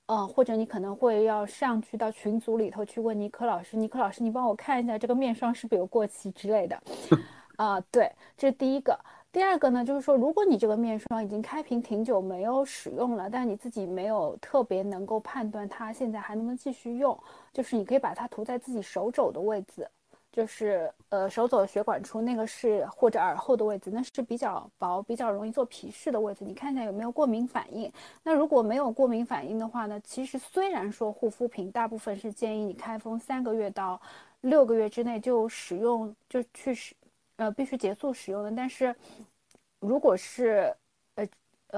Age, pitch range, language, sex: 20-39, 210-255 Hz, Chinese, female